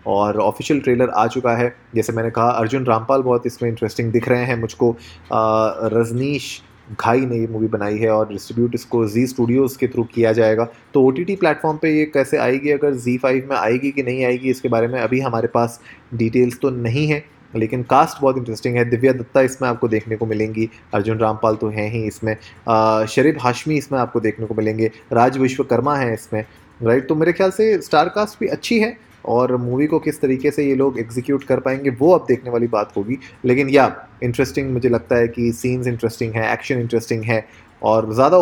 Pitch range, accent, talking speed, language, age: 115-130 Hz, native, 205 wpm, Hindi, 20-39